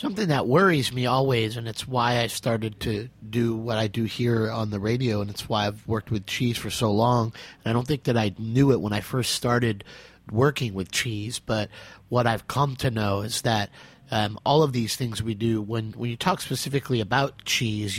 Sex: male